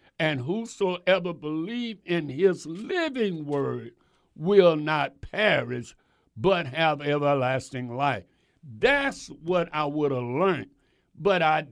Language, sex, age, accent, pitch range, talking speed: English, male, 60-79, American, 125-175 Hz, 115 wpm